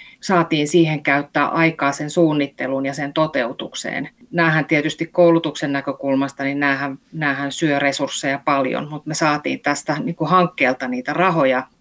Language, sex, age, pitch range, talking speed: Finnish, female, 30-49, 150-180 Hz, 135 wpm